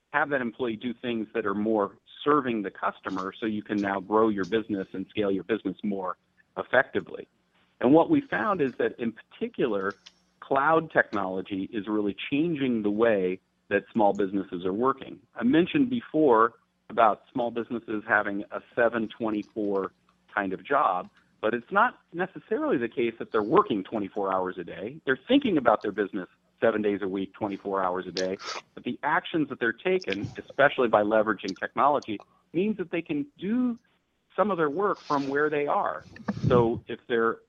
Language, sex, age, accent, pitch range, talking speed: English, male, 40-59, American, 105-145 Hz, 175 wpm